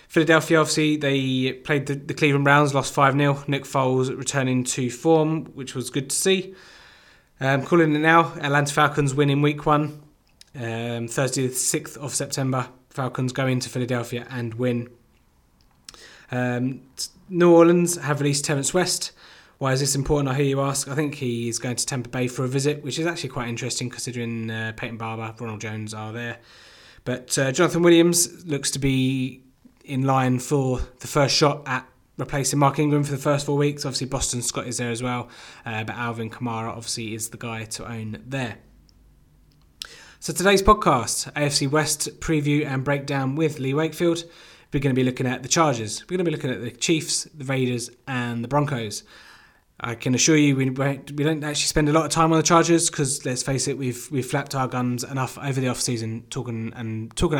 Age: 20-39